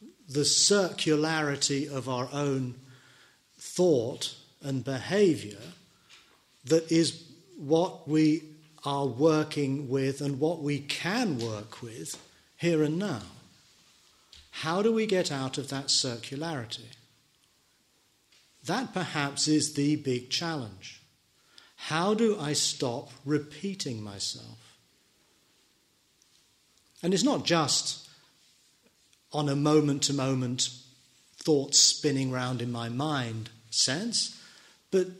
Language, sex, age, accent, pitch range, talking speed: English, male, 40-59, British, 135-170 Hz, 100 wpm